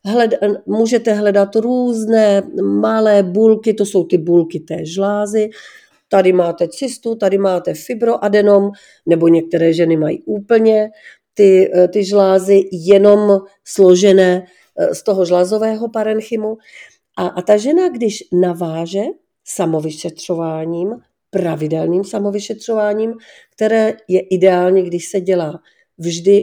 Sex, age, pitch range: female, 40-59, 175-220 Hz